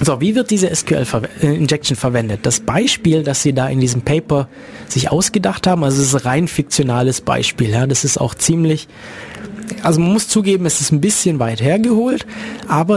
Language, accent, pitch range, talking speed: German, German, 135-190 Hz, 185 wpm